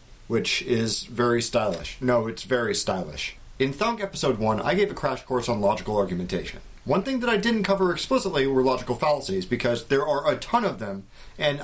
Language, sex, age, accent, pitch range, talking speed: English, male, 40-59, American, 120-180 Hz, 195 wpm